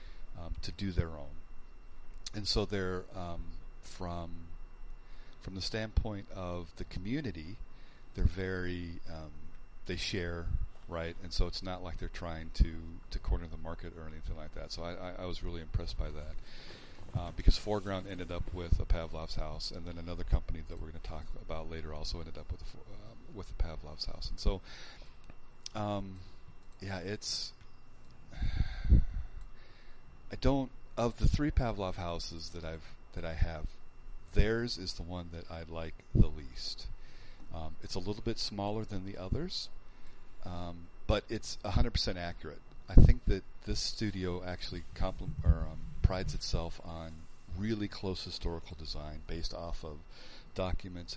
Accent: American